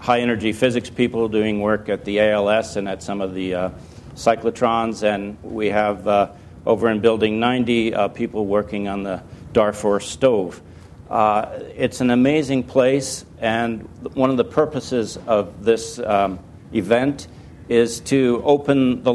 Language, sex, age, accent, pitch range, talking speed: English, male, 60-79, American, 105-125 Hz, 155 wpm